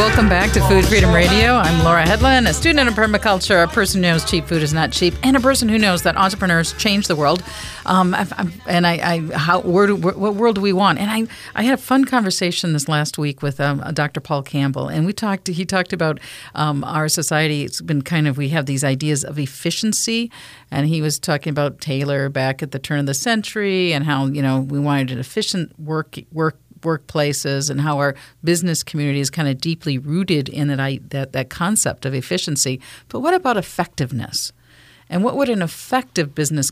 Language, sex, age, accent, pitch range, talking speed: English, female, 50-69, American, 145-185 Hz, 215 wpm